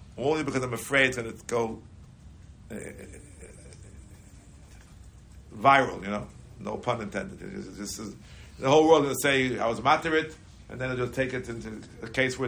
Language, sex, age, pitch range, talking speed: English, male, 60-79, 95-135 Hz, 180 wpm